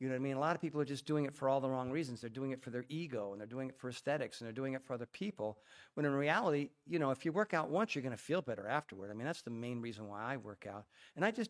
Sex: male